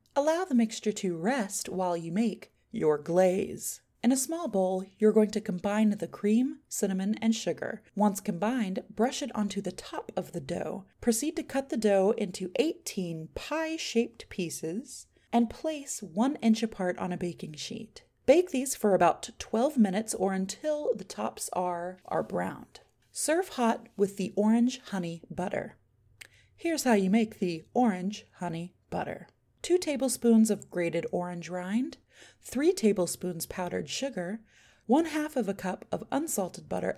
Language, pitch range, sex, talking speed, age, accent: English, 185-250 Hz, female, 155 wpm, 30-49, American